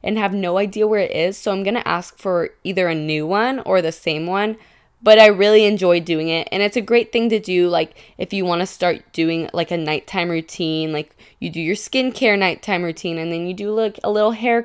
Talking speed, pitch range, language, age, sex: 240 wpm, 170-215 Hz, English, 20-39, female